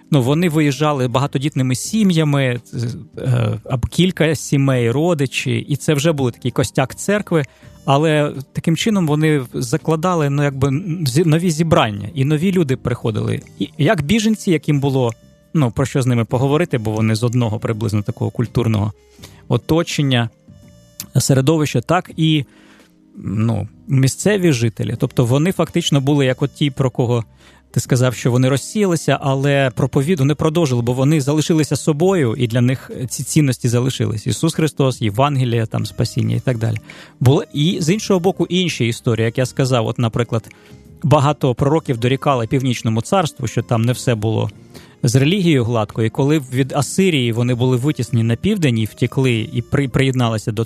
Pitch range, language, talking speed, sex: 120-155 Hz, Ukrainian, 150 wpm, male